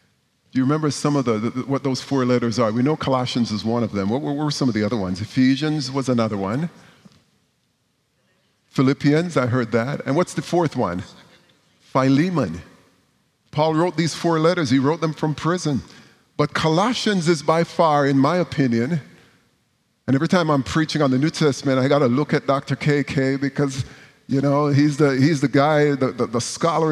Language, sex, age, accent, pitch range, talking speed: English, male, 50-69, American, 130-155 Hz, 195 wpm